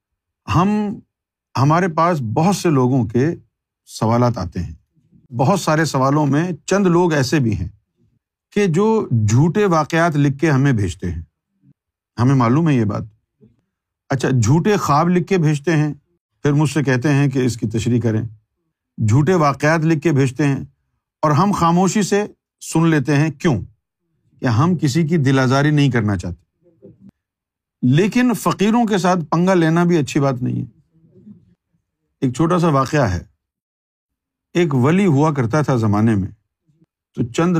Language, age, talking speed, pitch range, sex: Urdu, 50-69, 155 wpm, 115-165 Hz, male